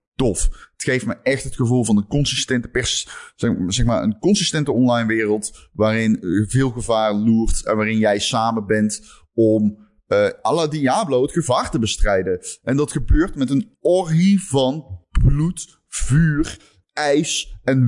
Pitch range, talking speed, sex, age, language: 105-140 Hz, 160 wpm, male, 20-39, Dutch